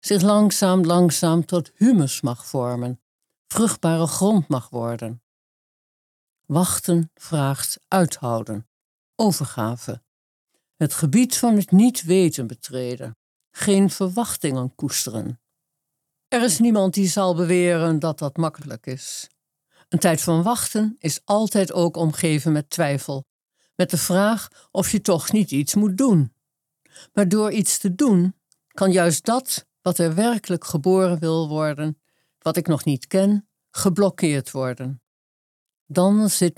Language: Dutch